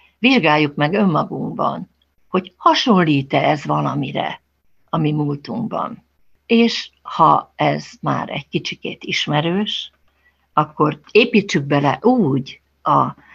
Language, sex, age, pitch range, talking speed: Hungarian, female, 60-79, 145-200 Hz, 100 wpm